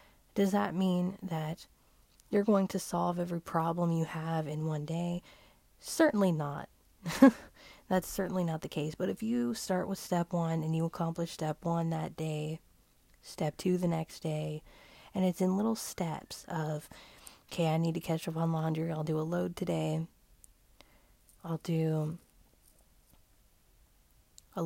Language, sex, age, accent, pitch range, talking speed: English, female, 30-49, American, 160-190 Hz, 155 wpm